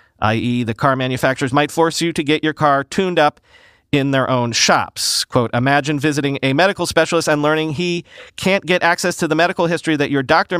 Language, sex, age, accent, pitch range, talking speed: English, male, 40-59, American, 130-175 Hz, 205 wpm